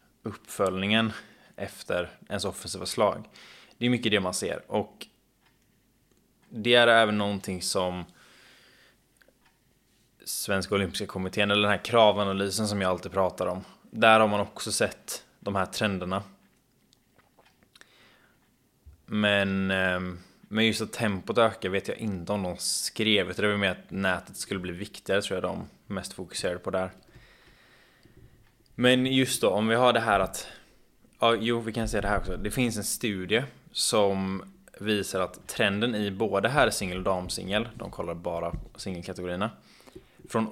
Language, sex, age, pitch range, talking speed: Swedish, male, 20-39, 95-115 Hz, 145 wpm